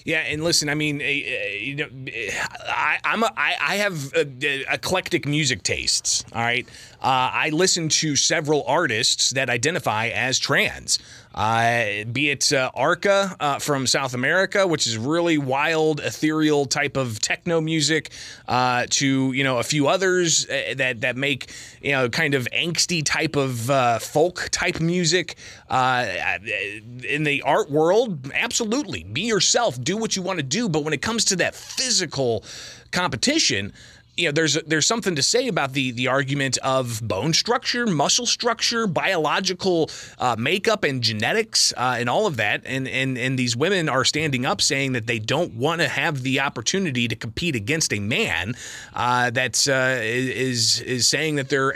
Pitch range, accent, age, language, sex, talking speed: 125-165 Hz, American, 30-49, English, male, 170 wpm